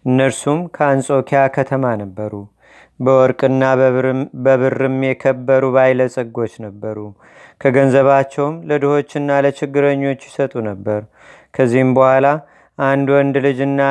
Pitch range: 130-145 Hz